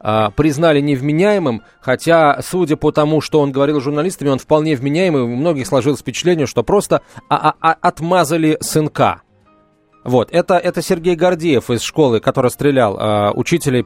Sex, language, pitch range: male, Russian, 120-170 Hz